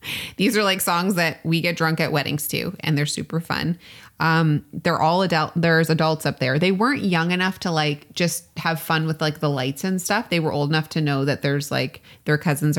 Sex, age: female, 20-39